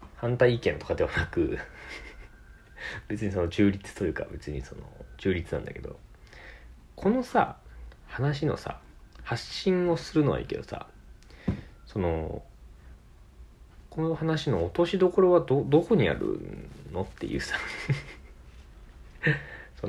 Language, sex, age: Japanese, male, 40-59